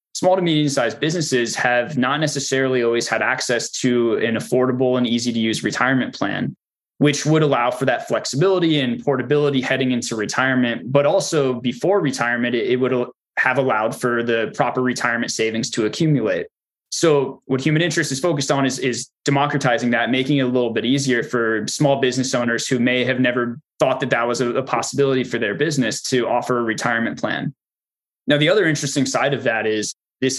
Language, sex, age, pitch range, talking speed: English, male, 20-39, 120-140 Hz, 185 wpm